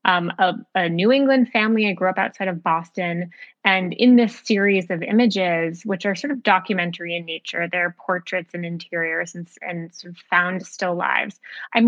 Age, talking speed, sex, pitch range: 20-39, 185 wpm, female, 175-225 Hz